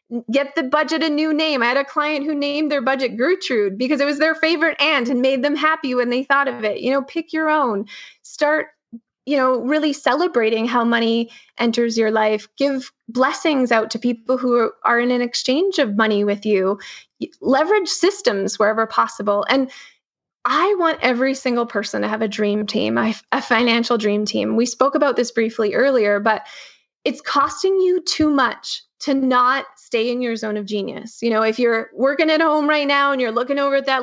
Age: 20-39